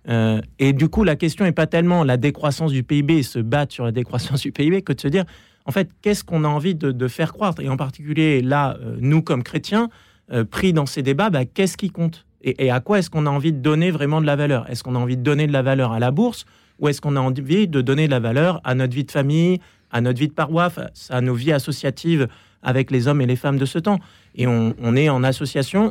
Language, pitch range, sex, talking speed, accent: French, 125-160 Hz, male, 270 wpm, French